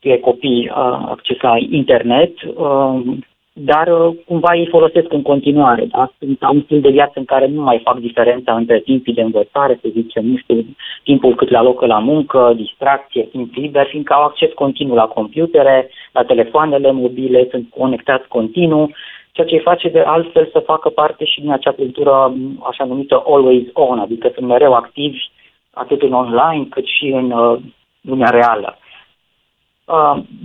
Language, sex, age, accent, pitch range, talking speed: Romanian, female, 30-49, native, 125-155 Hz, 170 wpm